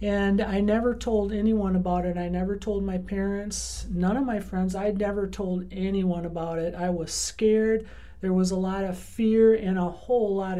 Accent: American